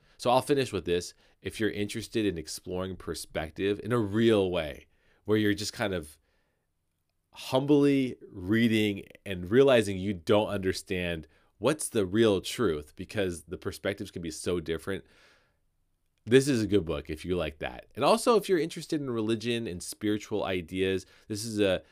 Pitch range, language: 80-110 Hz, English